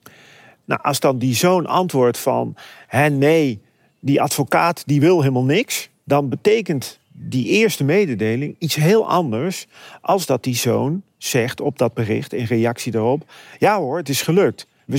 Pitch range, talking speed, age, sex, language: 125-175 Hz, 160 wpm, 40-59, male, Dutch